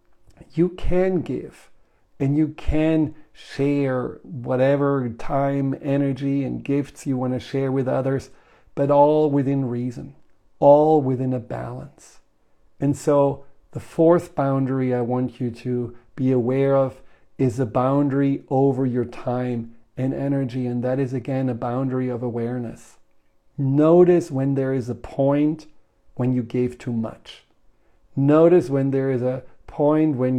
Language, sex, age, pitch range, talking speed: English, male, 50-69, 125-155 Hz, 140 wpm